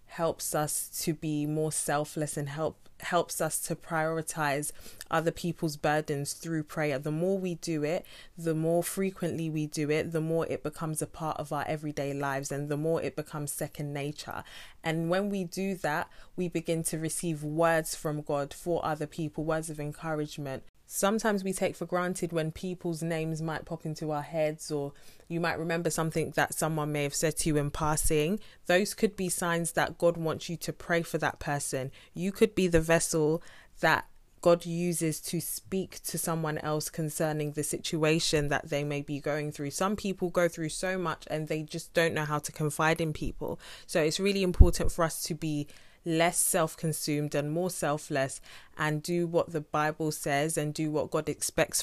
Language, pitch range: English, 150-170 Hz